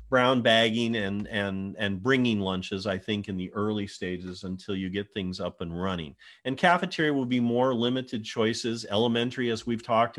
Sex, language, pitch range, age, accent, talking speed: male, English, 105-125 Hz, 40-59, American, 185 wpm